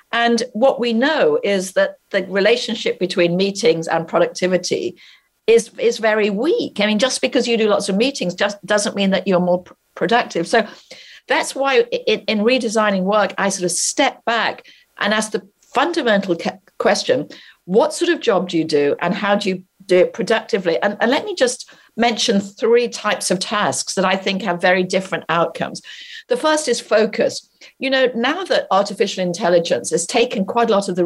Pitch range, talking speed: 175-235 Hz, 190 wpm